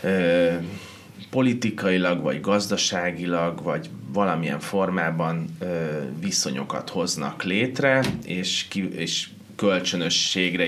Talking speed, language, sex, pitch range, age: 85 wpm, Hungarian, male, 80-95 Hz, 30-49